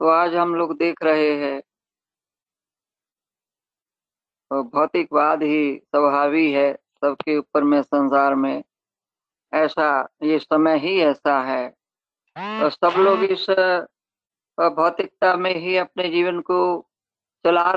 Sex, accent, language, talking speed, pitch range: female, native, Hindi, 120 wpm, 150-195 Hz